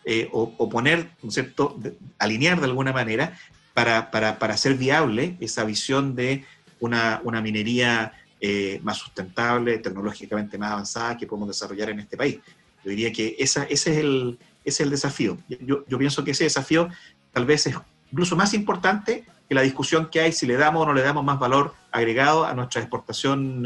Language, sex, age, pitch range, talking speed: Spanish, male, 40-59, 110-150 Hz, 190 wpm